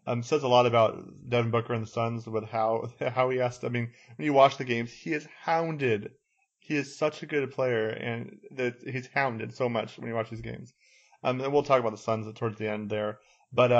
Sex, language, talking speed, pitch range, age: male, English, 235 wpm, 115-130 Hz, 30-49